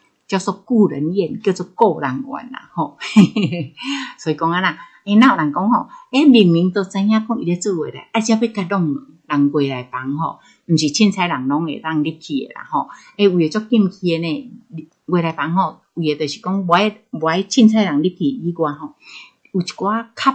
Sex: female